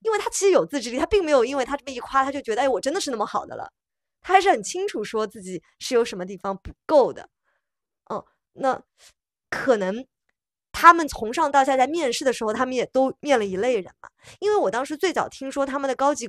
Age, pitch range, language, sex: 20-39, 195-295 Hz, Chinese, female